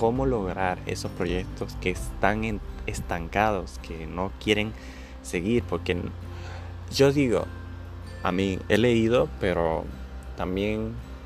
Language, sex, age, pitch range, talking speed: Spanish, male, 20-39, 85-115 Hz, 105 wpm